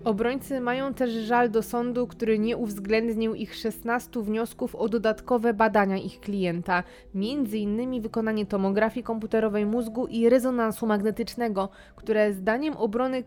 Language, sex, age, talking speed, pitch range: Polish, female, 20-39, 125 wpm, 200-240 Hz